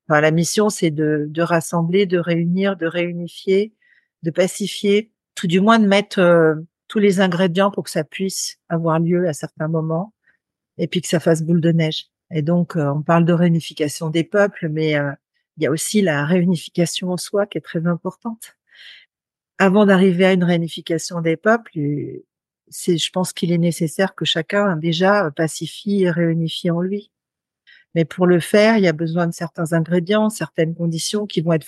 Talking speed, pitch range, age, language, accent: 185 wpm, 165-205 Hz, 40-59, French, French